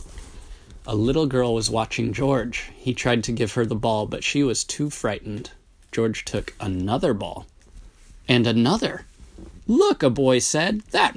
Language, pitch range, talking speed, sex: English, 100-130 Hz, 155 wpm, male